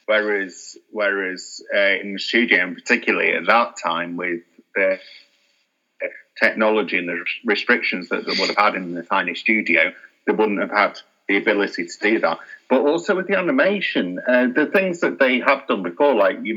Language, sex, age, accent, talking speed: English, male, 30-49, British, 185 wpm